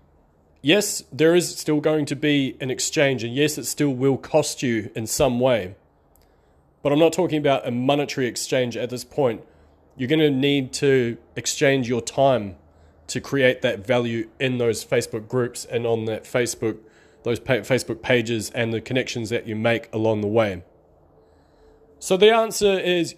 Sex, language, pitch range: male, English, 110-145 Hz